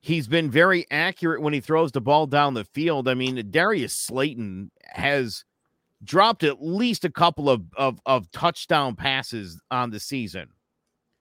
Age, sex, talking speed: 50-69, male, 160 wpm